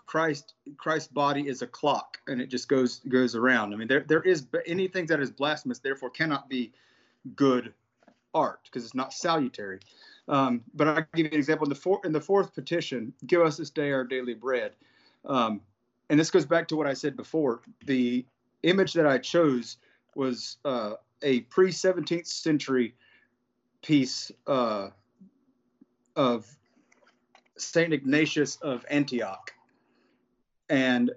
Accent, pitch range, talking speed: American, 125-160 Hz, 155 wpm